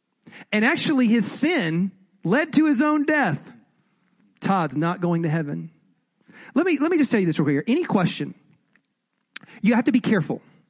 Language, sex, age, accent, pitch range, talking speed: English, male, 40-59, American, 180-250 Hz, 180 wpm